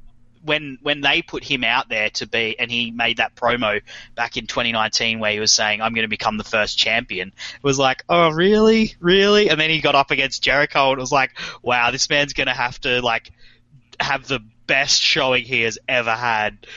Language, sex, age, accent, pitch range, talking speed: English, male, 20-39, Australian, 115-135 Hz, 220 wpm